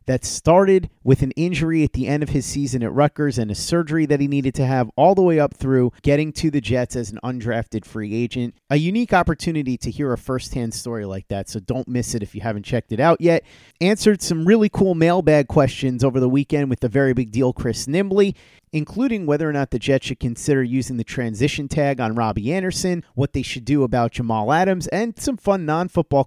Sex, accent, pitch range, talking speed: male, American, 120-155 Hz, 225 wpm